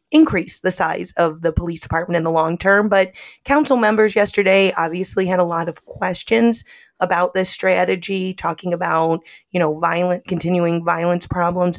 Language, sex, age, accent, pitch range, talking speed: English, female, 30-49, American, 170-225 Hz, 165 wpm